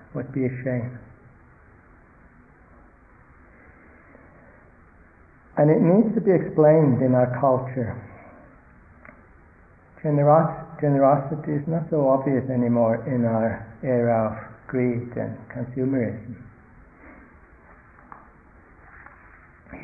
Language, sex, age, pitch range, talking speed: English, male, 60-79, 115-145 Hz, 80 wpm